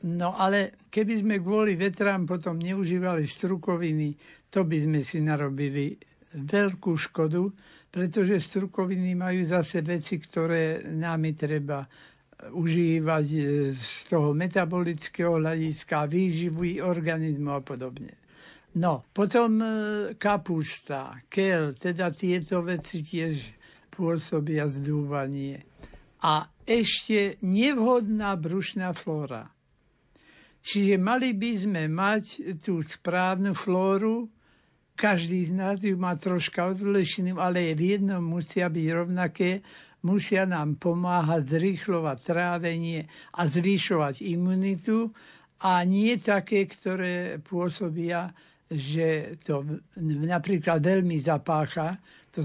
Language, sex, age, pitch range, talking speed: Slovak, male, 60-79, 160-195 Hz, 100 wpm